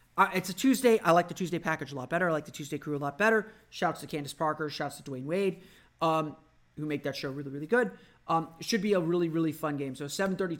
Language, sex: English, male